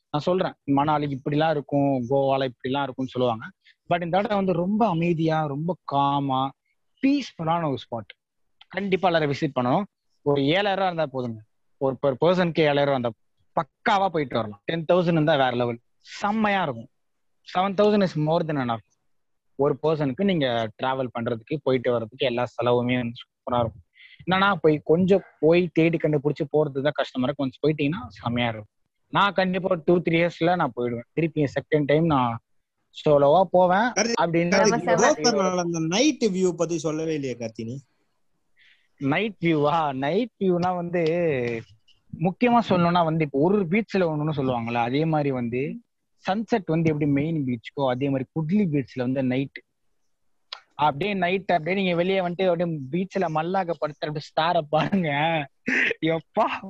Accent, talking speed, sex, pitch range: native, 110 wpm, male, 135-180 Hz